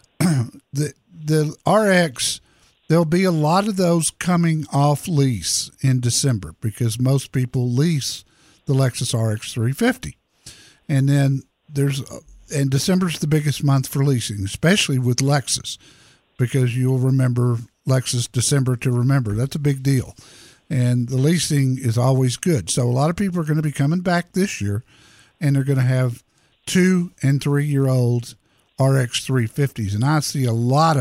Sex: male